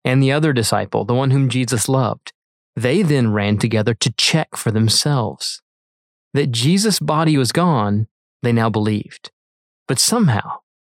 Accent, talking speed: American, 150 wpm